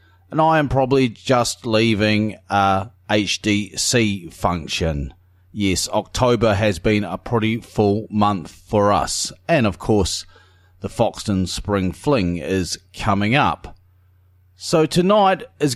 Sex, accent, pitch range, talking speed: male, Australian, 95-140 Hz, 120 wpm